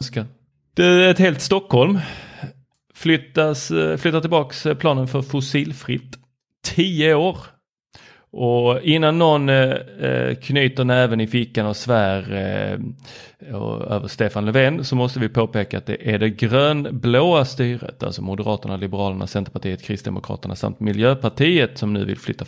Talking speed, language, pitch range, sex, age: 135 wpm, Swedish, 110-145 Hz, male, 30-49